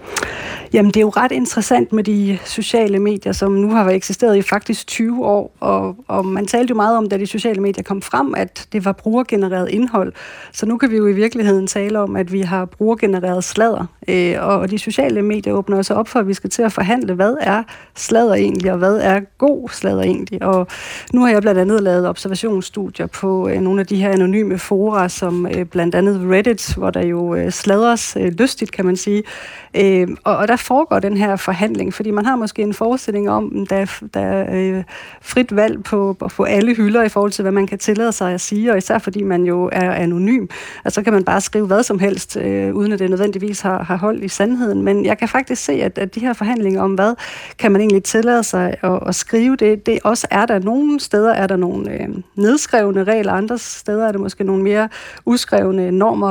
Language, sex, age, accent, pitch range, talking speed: Danish, female, 30-49, native, 190-220 Hz, 225 wpm